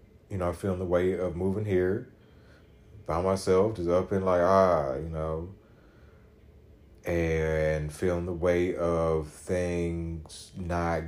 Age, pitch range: 30-49, 85-115 Hz